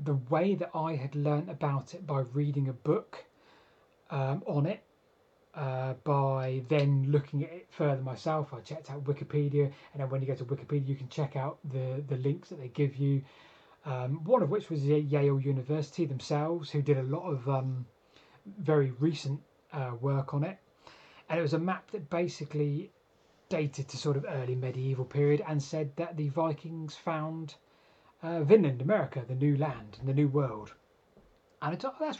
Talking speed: 185 wpm